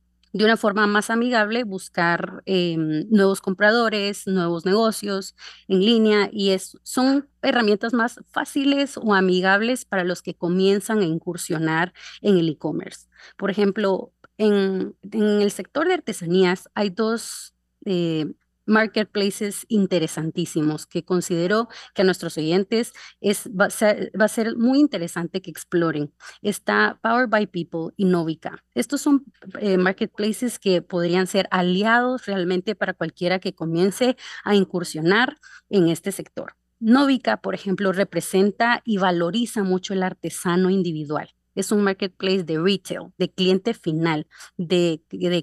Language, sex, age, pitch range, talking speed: Spanish, female, 30-49, 180-225 Hz, 135 wpm